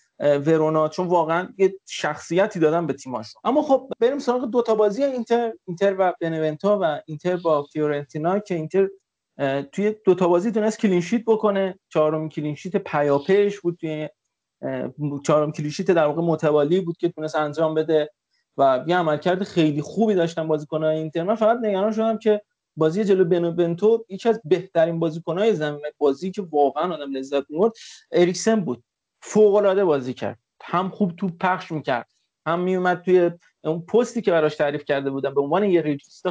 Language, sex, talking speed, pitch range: Persian, male, 160 wpm, 155-210 Hz